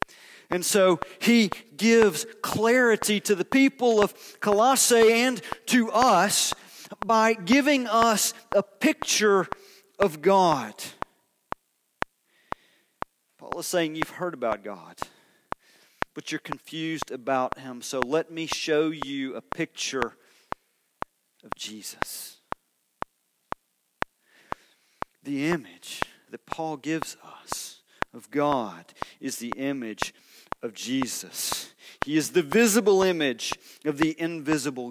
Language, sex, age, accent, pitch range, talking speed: English, male, 40-59, American, 155-225 Hz, 110 wpm